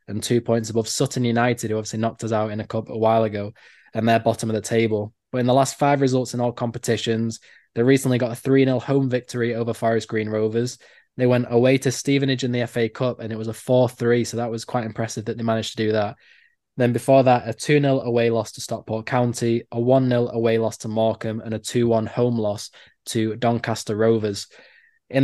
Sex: male